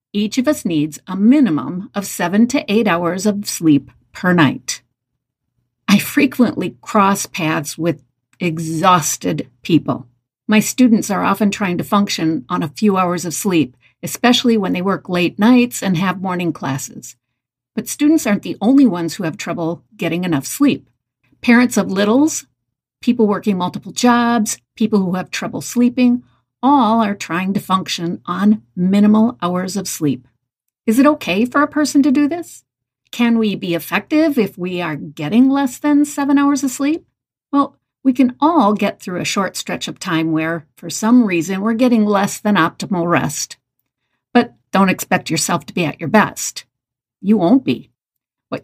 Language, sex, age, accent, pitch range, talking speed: English, female, 50-69, American, 165-235 Hz, 170 wpm